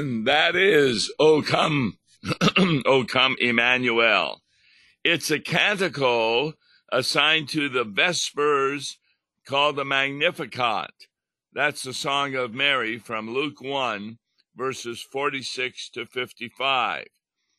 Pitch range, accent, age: 125-150 Hz, American, 60-79